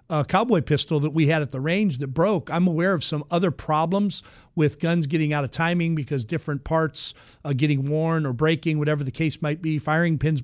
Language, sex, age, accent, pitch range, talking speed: English, male, 40-59, American, 140-165 Hz, 220 wpm